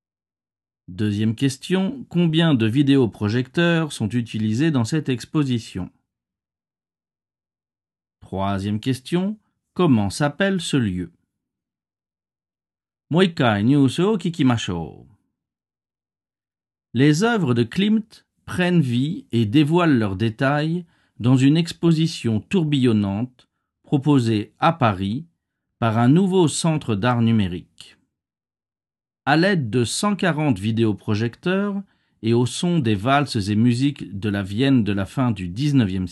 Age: 50-69